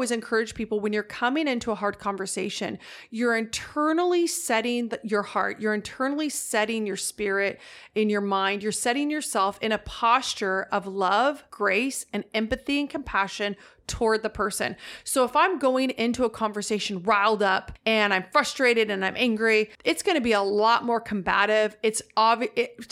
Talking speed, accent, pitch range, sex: 170 wpm, American, 205-245 Hz, female